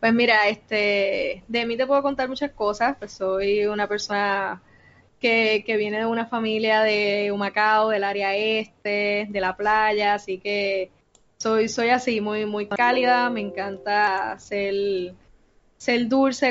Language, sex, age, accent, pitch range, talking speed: Spanish, female, 10-29, American, 200-225 Hz, 150 wpm